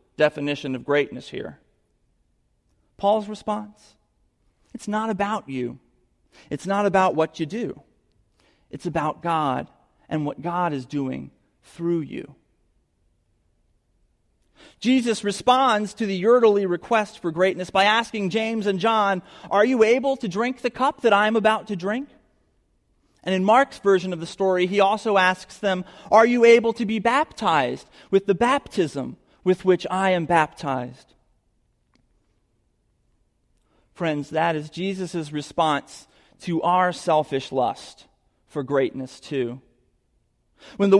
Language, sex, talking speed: English, male, 135 wpm